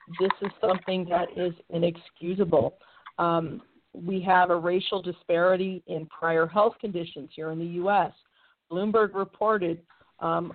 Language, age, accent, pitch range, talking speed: English, 50-69, American, 170-190 Hz, 130 wpm